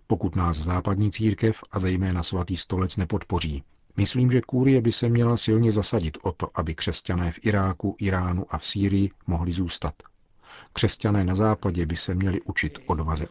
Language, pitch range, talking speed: Czech, 90-110 Hz, 165 wpm